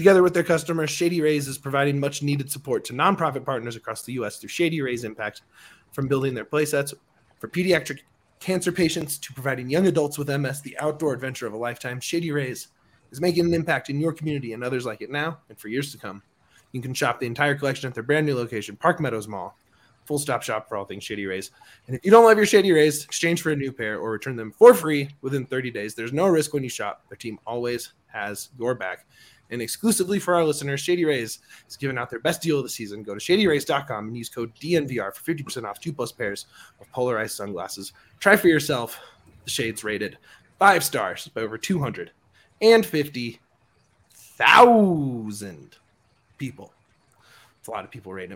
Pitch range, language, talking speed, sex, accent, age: 115-155 Hz, English, 200 wpm, male, American, 20-39